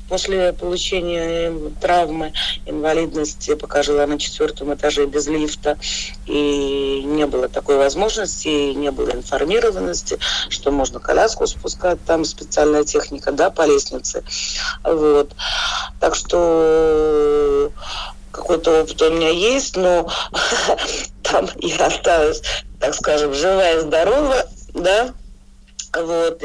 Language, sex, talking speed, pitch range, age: Russian, female, 110 wpm, 145-235 Hz, 40-59